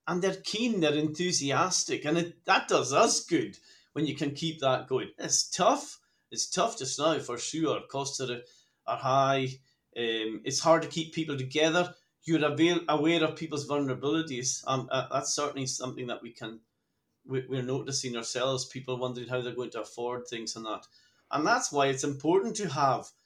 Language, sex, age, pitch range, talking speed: English, male, 30-49, 125-155 Hz, 185 wpm